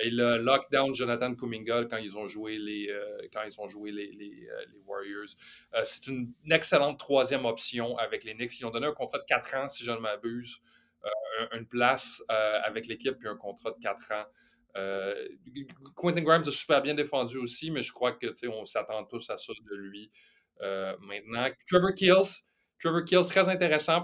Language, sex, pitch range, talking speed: French, male, 115-160 Hz, 175 wpm